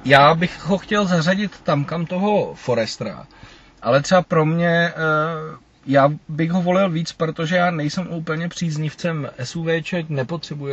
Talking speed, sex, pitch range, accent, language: 145 wpm, male, 135-170 Hz, native, Czech